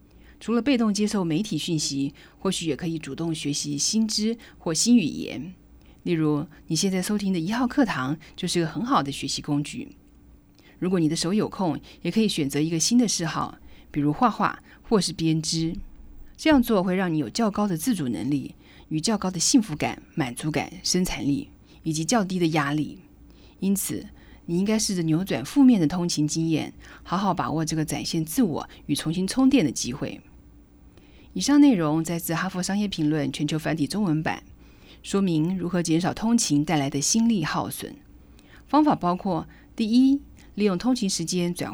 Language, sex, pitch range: Chinese, female, 150-205 Hz